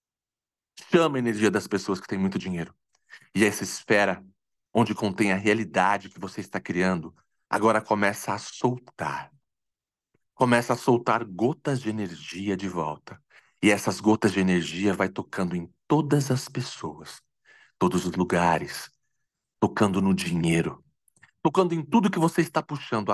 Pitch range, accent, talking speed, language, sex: 90-120 Hz, Brazilian, 145 wpm, Portuguese, male